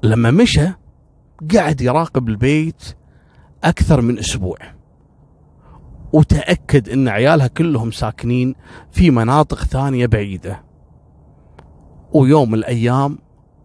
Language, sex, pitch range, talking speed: Arabic, male, 120-145 Hz, 85 wpm